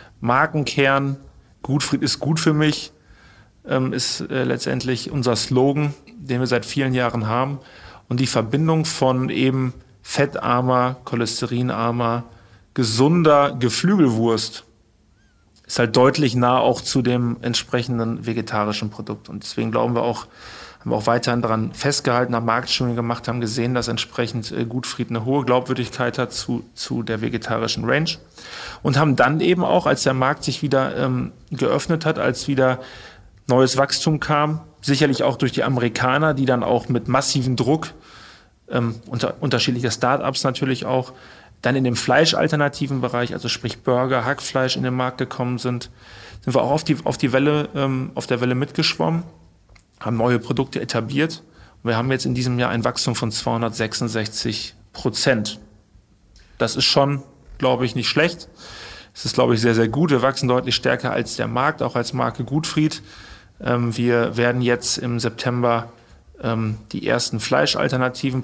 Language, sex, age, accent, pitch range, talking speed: German, male, 40-59, German, 115-135 Hz, 150 wpm